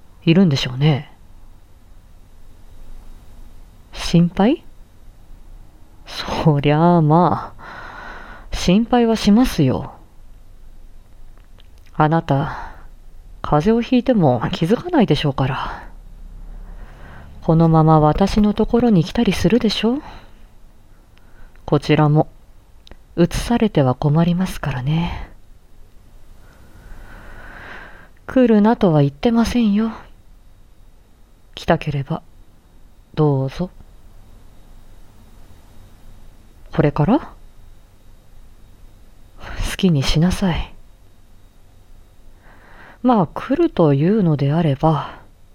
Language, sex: Japanese, female